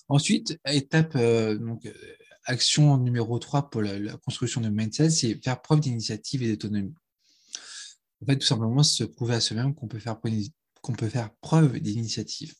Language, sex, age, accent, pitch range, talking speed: French, male, 20-39, French, 110-140 Hz, 170 wpm